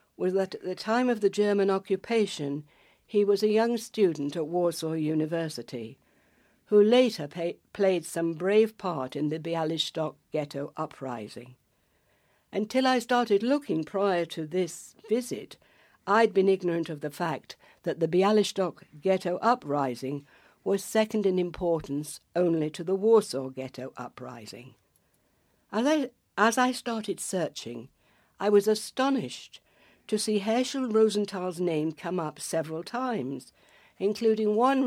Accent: British